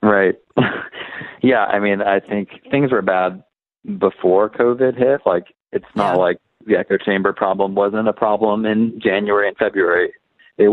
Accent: American